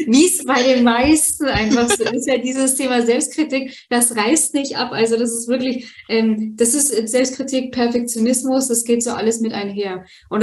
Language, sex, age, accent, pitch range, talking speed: German, female, 20-39, German, 220-240 Hz, 180 wpm